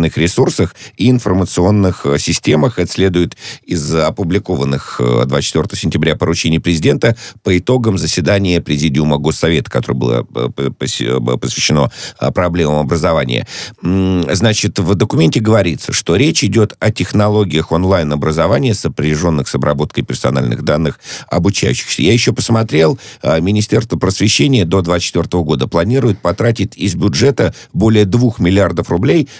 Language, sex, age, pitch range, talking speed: Russian, male, 50-69, 80-110 Hz, 110 wpm